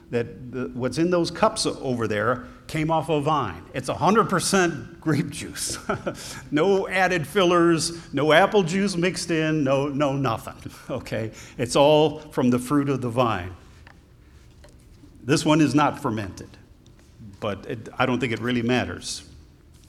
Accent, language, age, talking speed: American, English, 50-69, 145 wpm